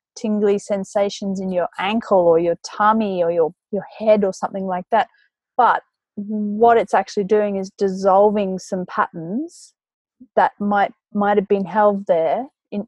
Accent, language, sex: Australian, English, female